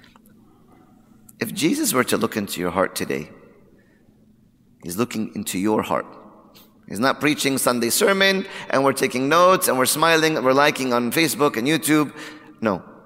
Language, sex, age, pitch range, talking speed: English, male, 30-49, 125-195 Hz, 155 wpm